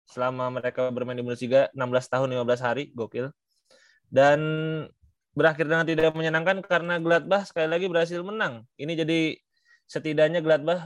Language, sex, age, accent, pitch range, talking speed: Indonesian, male, 20-39, native, 130-165 Hz, 140 wpm